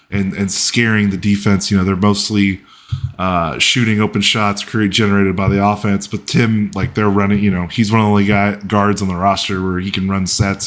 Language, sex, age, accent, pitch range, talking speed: English, male, 20-39, American, 95-110 Hz, 225 wpm